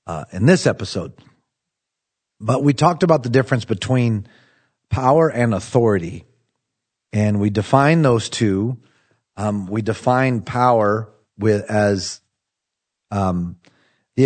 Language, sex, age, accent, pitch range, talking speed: English, male, 40-59, American, 100-125 Hz, 115 wpm